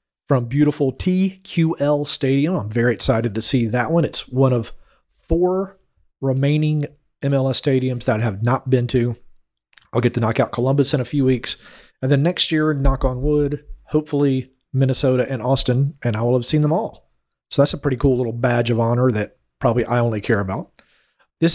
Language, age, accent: English, 40-59, American